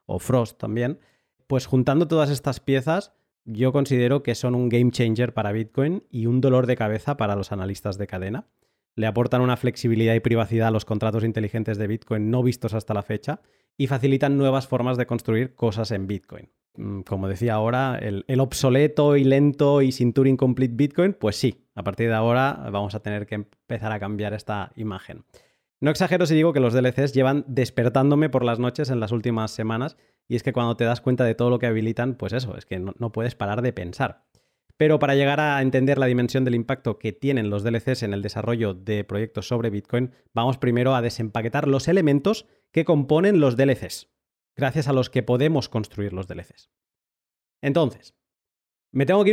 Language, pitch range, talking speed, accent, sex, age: Spanish, 110-135 Hz, 195 wpm, Spanish, male, 20-39